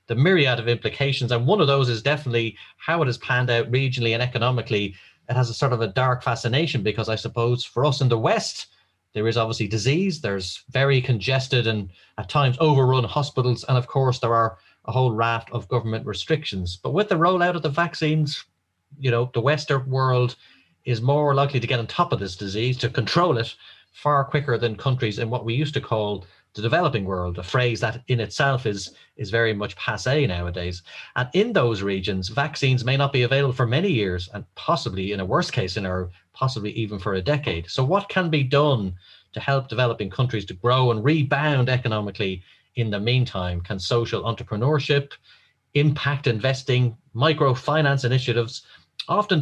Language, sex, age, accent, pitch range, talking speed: English, male, 30-49, Irish, 110-140 Hz, 190 wpm